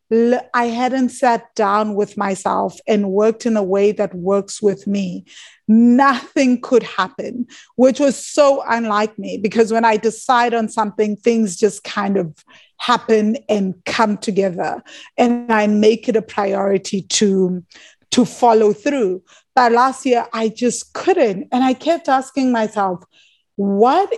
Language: English